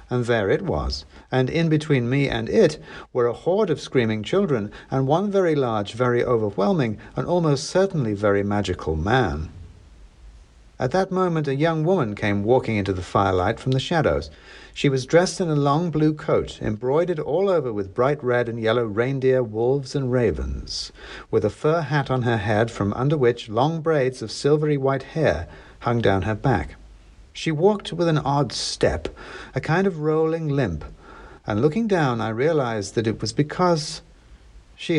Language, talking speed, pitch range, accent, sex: English, 175 wpm, 95-155 Hz, British, male